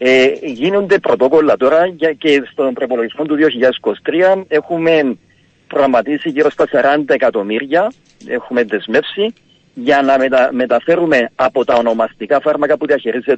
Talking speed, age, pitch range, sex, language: 120 wpm, 40-59, 150-190 Hz, male, Greek